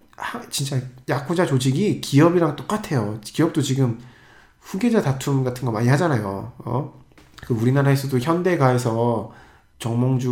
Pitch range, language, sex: 115-140 Hz, Korean, male